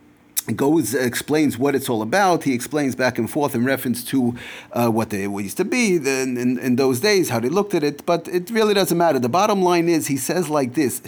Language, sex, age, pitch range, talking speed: English, male, 40-59, 125-185 Hz, 240 wpm